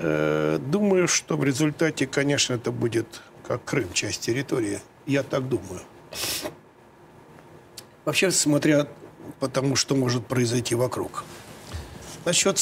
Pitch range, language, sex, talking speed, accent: 125-160 Hz, Russian, male, 105 wpm, native